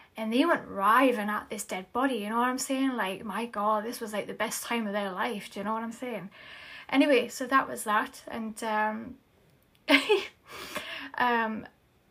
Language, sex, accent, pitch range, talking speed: English, female, British, 210-250 Hz, 195 wpm